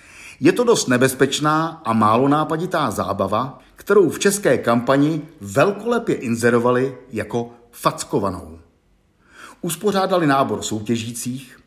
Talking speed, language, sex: 100 wpm, Czech, male